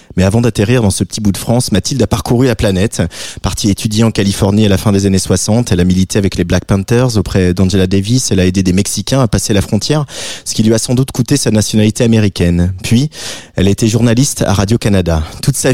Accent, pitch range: French, 95-115 Hz